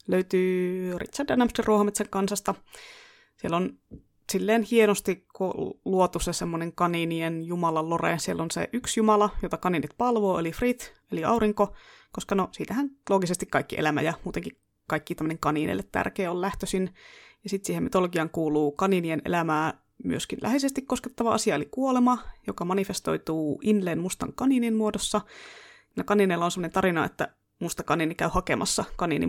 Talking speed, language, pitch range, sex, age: 140 wpm, Finnish, 170-215 Hz, female, 20-39